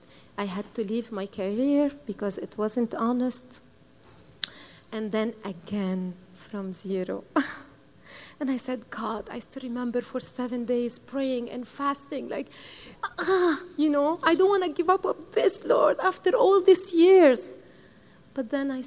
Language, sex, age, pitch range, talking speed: English, female, 30-49, 215-285 Hz, 155 wpm